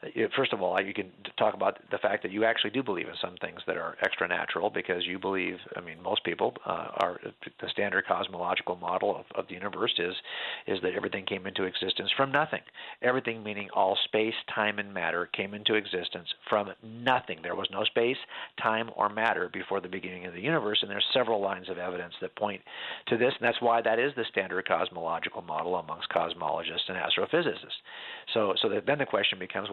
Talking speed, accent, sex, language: 205 wpm, American, male, English